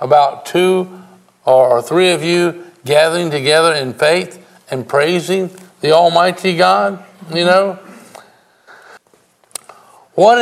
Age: 60-79